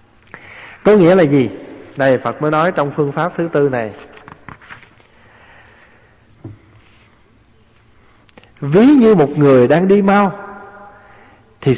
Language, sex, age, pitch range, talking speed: Vietnamese, male, 20-39, 140-210 Hz, 110 wpm